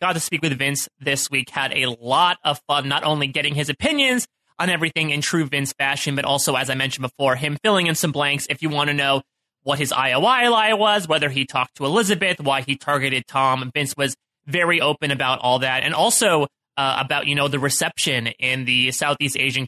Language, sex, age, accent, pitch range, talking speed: English, male, 30-49, American, 130-170 Hz, 220 wpm